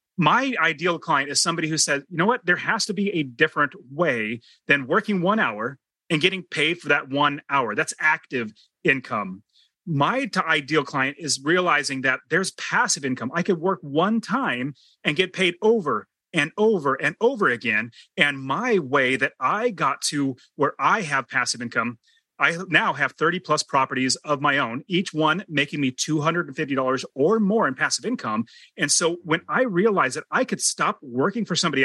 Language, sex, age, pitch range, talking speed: English, male, 30-49, 140-195 Hz, 185 wpm